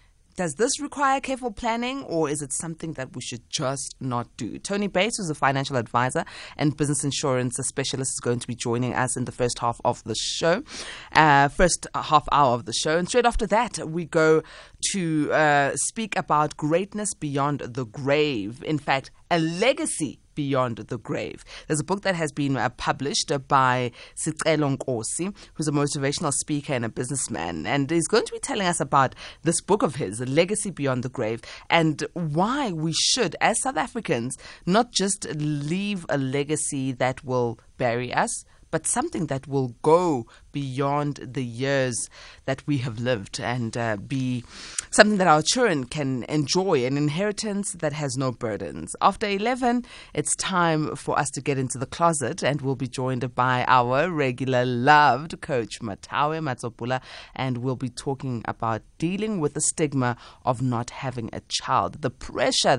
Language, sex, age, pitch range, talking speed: English, female, 20-39, 125-170 Hz, 170 wpm